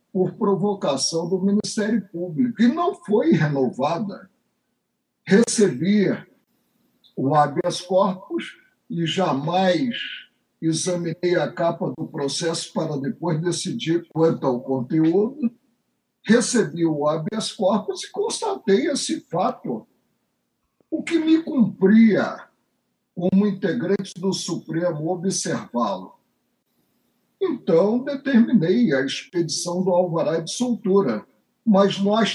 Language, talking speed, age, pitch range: Portuguese, 100 wpm, 60-79, 170-225 Hz